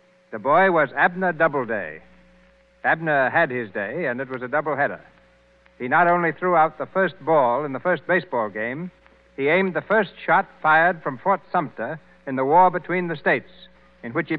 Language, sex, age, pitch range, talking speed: English, male, 60-79, 140-180 Hz, 190 wpm